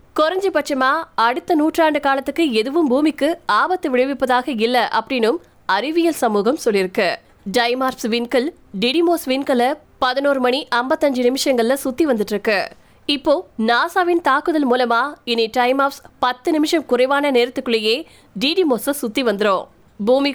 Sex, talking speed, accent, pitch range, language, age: female, 85 wpm, native, 235-295 Hz, Tamil, 20-39